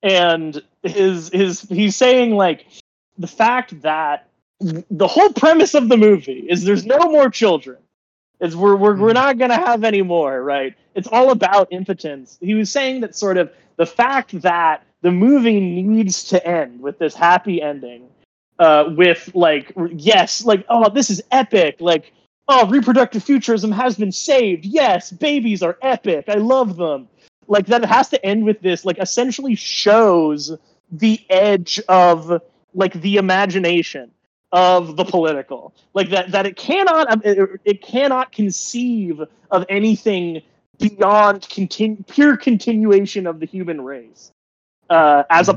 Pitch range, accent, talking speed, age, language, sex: 170-235 Hz, American, 155 wpm, 30-49, English, male